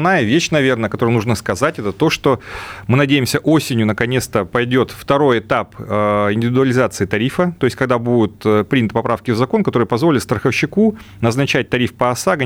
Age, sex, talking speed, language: 30-49, male, 155 wpm, Russian